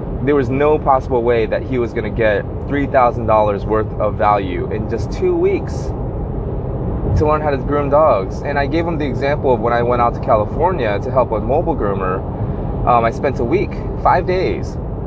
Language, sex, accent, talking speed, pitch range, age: English, male, American, 205 wpm, 115-150 Hz, 20-39